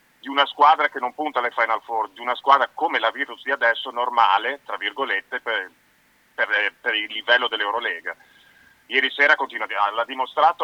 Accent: native